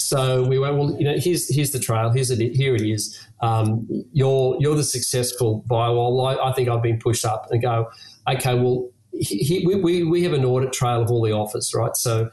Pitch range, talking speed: 110-125 Hz, 225 wpm